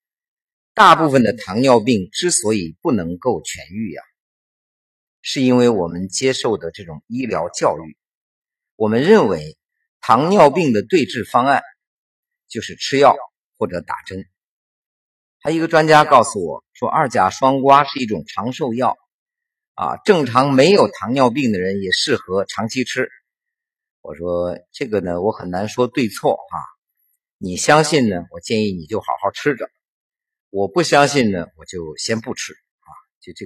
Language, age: Chinese, 50-69